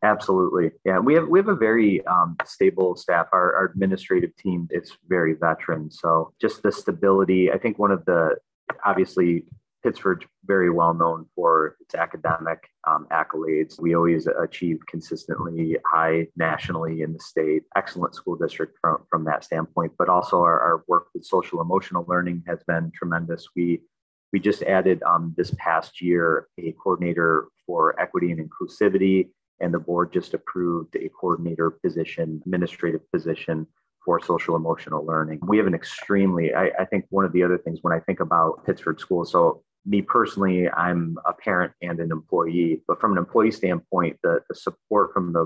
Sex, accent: male, American